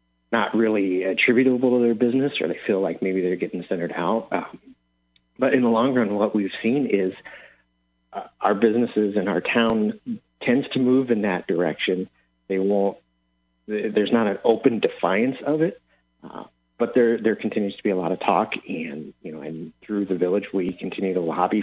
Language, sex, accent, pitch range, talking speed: English, male, American, 90-115 Hz, 190 wpm